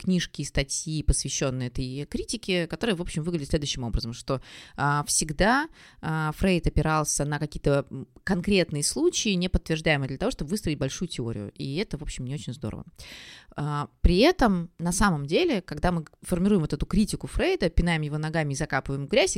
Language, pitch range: Russian, 145-195 Hz